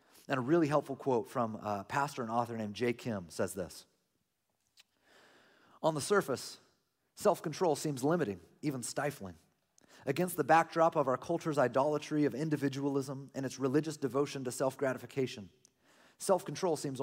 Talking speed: 140 wpm